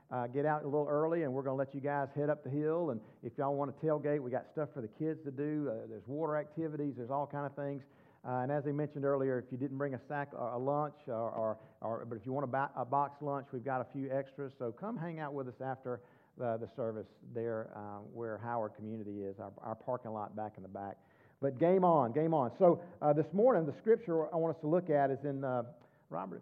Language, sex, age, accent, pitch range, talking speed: English, male, 50-69, American, 125-155 Hz, 265 wpm